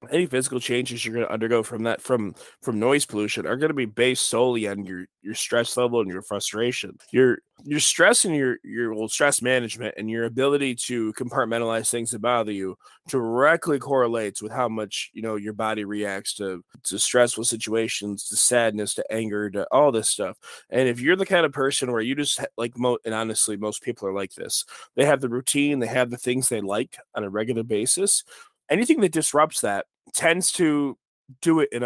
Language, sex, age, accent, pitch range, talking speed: English, male, 20-39, American, 115-145 Hz, 205 wpm